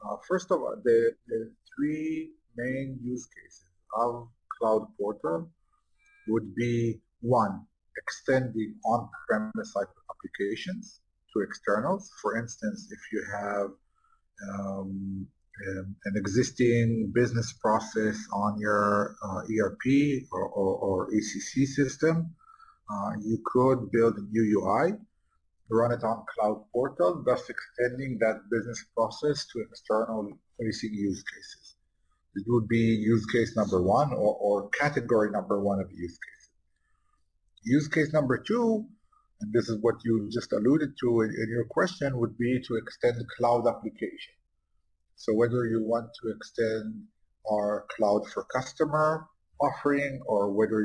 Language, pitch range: English, 105-140 Hz